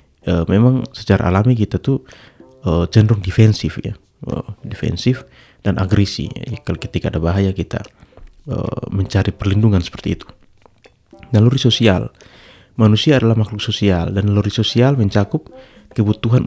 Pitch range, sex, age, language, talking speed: 95-125 Hz, male, 30-49, Indonesian, 130 wpm